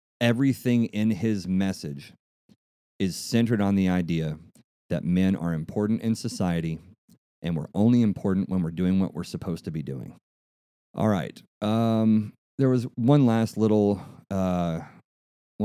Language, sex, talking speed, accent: English, male, 140 wpm, American